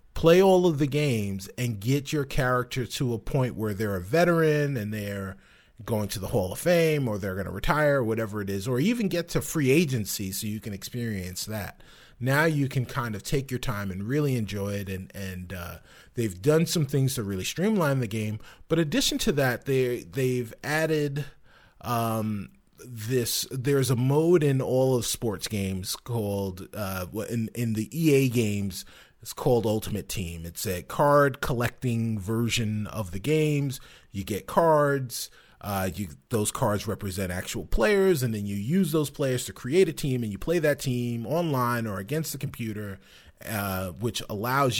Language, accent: English, American